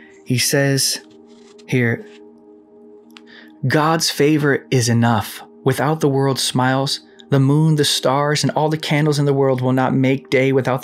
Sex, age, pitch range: male, 20-39, 120-155 Hz